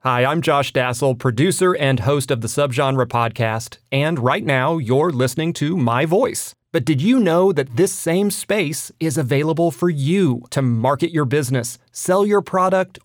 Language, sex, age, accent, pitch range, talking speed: English, male, 30-49, American, 125-170 Hz, 175 wpm